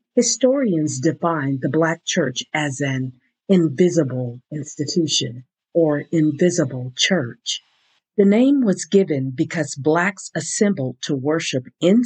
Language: English